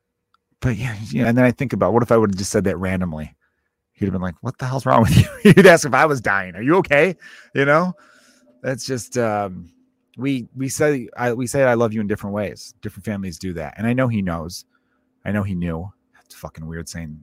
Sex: male